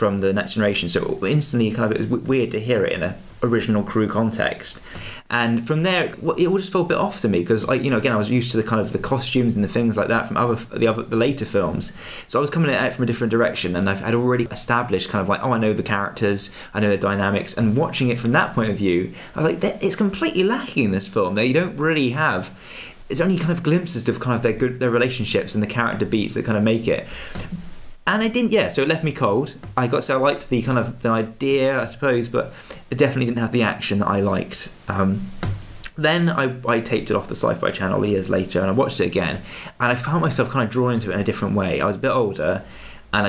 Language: English